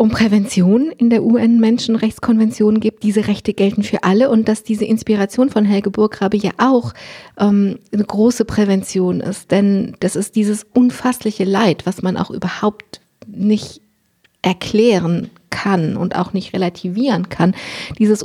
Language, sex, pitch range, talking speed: German, female, 195-230 Hz, 150 wpm